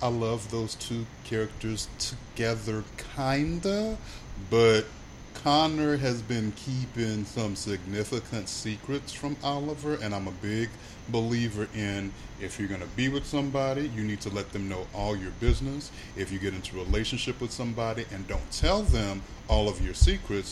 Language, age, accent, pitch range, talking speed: English, 30-49, American, 100-130 Hz, 165 wpm